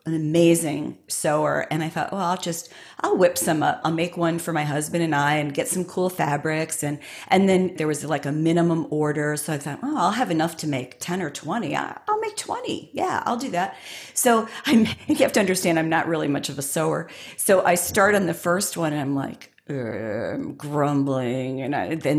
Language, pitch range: English, 160-220 Hz